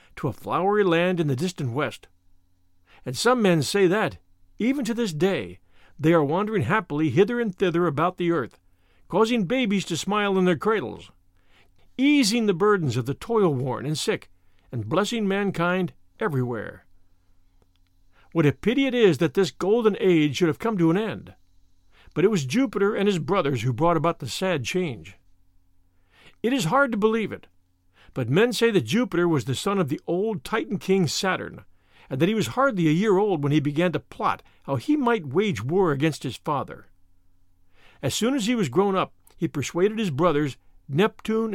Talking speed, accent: 185 wpm, American